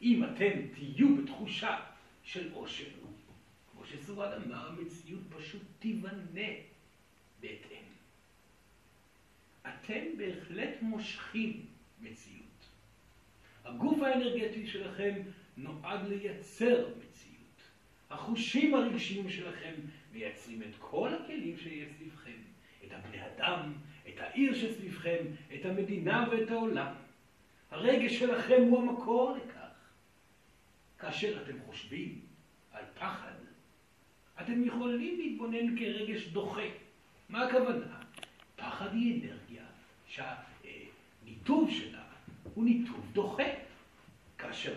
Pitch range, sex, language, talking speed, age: 185-245 Hz, male, Hebrew, 90 wpm, 60-79